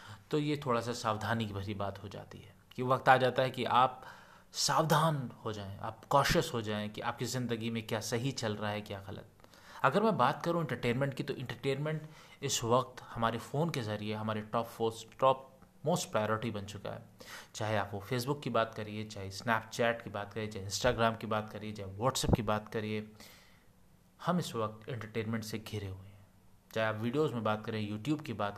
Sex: male